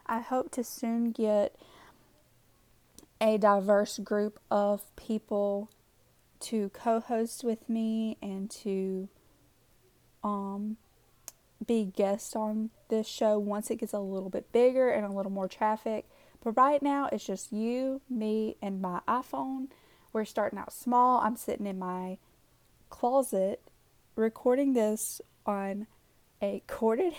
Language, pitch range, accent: English, 205-235 Hz, American